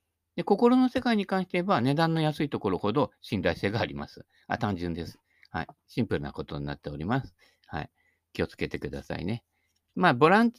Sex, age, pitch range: male, 50-69, 90-145 Hz